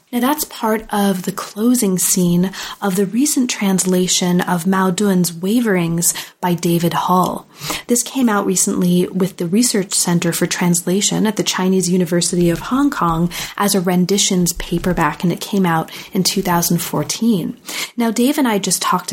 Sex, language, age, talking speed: female, English, 30-49, 160 wpm